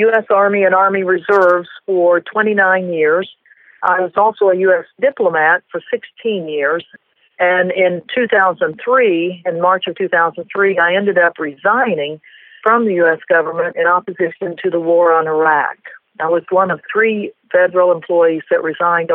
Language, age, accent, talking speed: English, 50-69, American, 150 wpm